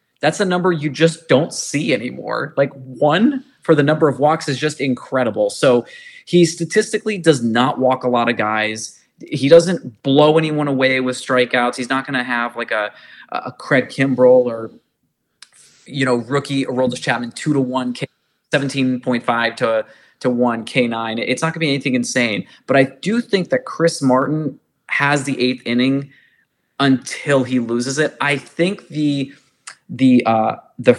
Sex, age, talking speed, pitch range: male, 20-39, 170 wpm, 125-150 Hz